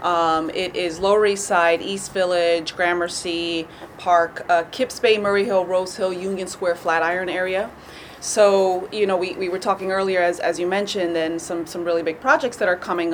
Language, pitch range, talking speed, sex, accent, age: English, 165-195 Hz, 190 wpm, female, American, 30-49